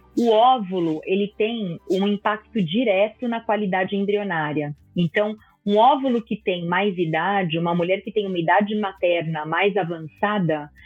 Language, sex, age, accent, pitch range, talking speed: Portuguese, female, 30-49, Brazilian, 180-215 Hz, 145 wpm